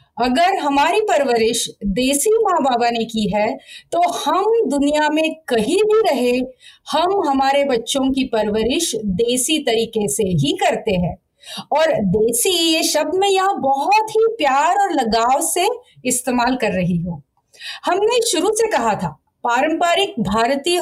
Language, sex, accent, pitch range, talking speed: Hindi, female, native, 230-360 Hz, 145 wpm